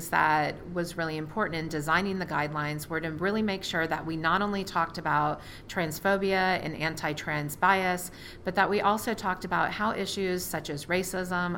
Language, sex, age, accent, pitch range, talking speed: English, female, 40-59, American, 155-190 Hz, 175 wpm